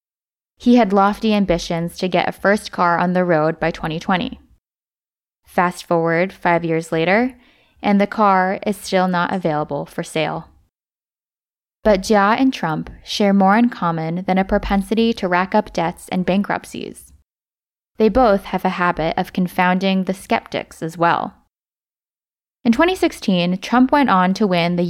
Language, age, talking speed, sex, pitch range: English, 10-29, 155 wpm, female, 175-210 Hz